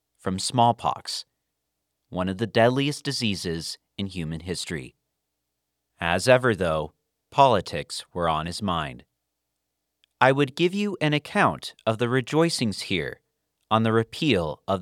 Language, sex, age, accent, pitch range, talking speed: English, male, 40-59, American, 85-120 Hz, 130 wpm